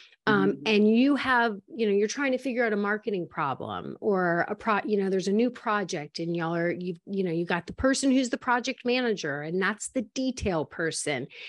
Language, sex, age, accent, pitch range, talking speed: English, female, 40-59, American, 200-255 Hz, 220 wpm